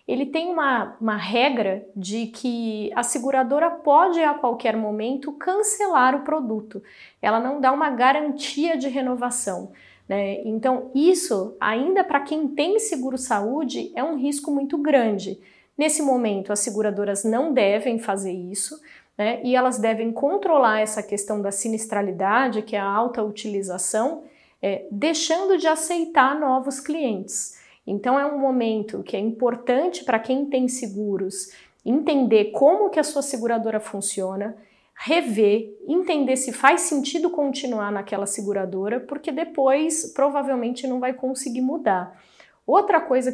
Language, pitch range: Portuguese, 210-285 Hz